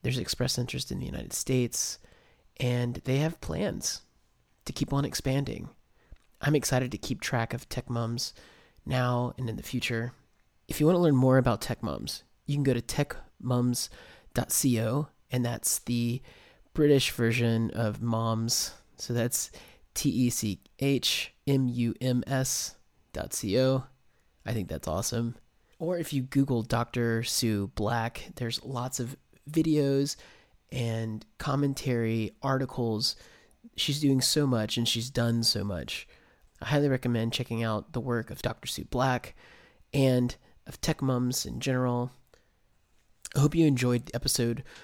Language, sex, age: English, male, 30-49